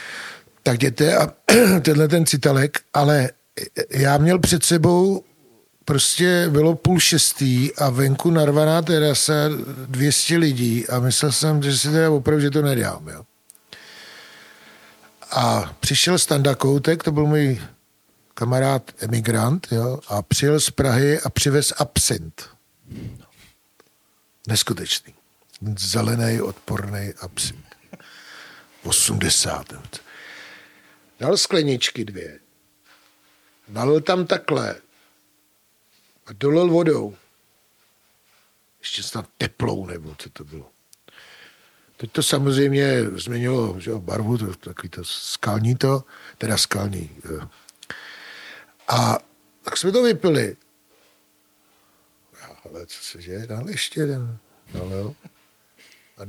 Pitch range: 110-150 Hz